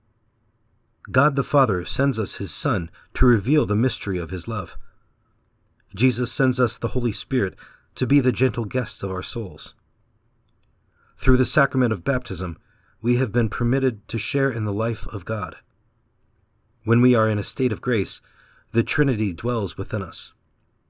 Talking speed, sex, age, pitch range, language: 165 wpm, male, 40-59, 105-120 Hz, English